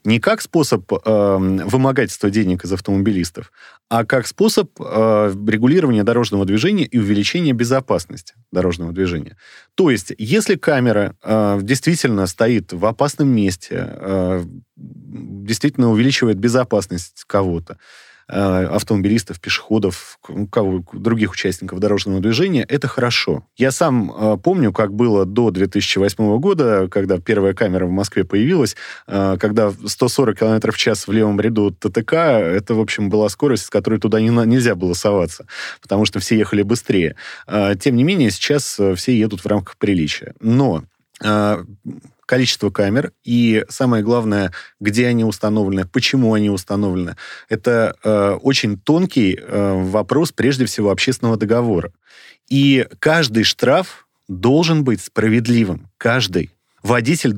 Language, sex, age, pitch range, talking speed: Russian, male, 30-49, 100-120 Hz, 125 wpm